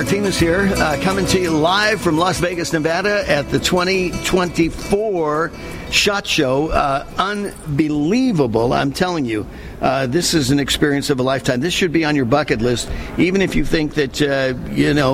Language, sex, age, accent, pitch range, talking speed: English, male, 50-69, American, 120-165 Hz, 180 wpm